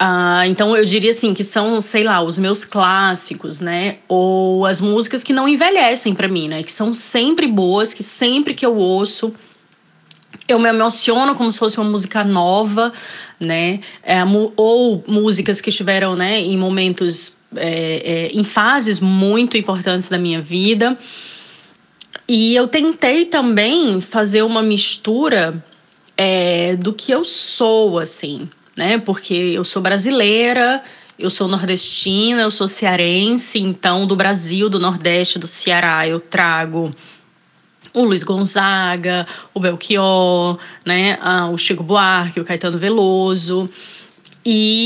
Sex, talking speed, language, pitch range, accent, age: female, 130 wpm, Portuguese, 175-220 Hz, Brazilian, 20-39